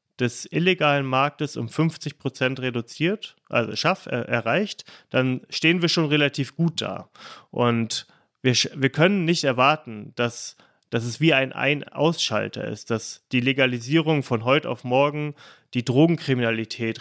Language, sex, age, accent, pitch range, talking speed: German, male, 30-49, German, 120-150 Hz, 140 wpm